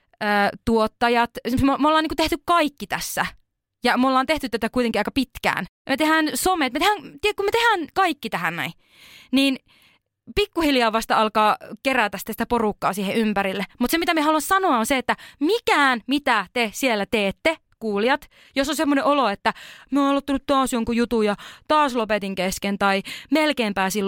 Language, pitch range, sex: Finnish, 215-295 Hz, female